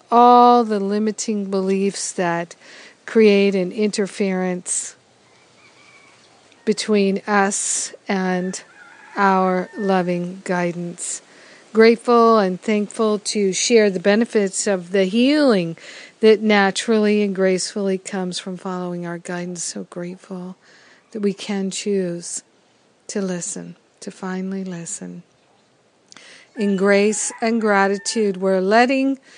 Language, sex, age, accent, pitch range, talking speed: English, female, 50-69, American, 180-215 Hz, 100 wpm